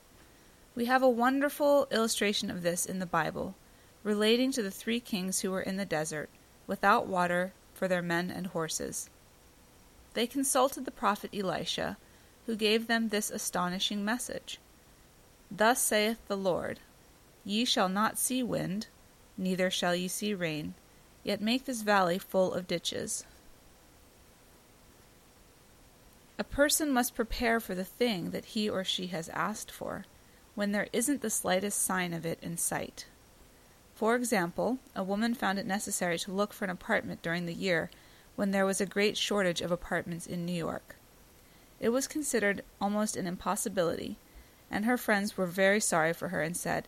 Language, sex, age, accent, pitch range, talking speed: English, female, 30-49, American, 180-235 Hz, 160 wpm